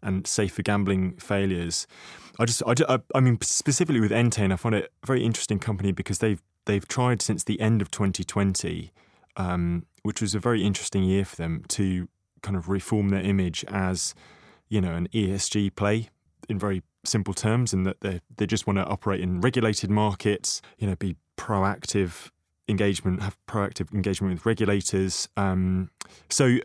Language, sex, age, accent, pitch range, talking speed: English, male, 20-39, British, 95-110 Hz, 175 wpm